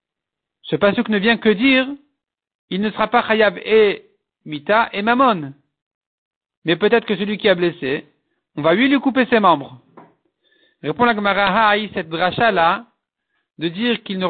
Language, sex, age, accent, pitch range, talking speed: French, male, 50-69, French, 175-225 Hz, 165 wpm